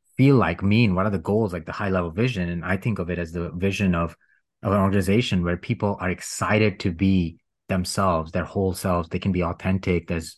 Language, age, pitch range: English, 30-49, 90-105 Hz